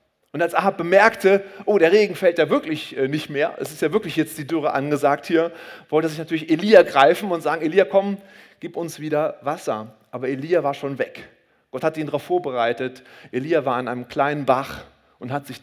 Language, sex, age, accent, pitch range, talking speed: German, male, 30-49, German, 140-190 Hz, 205 wpm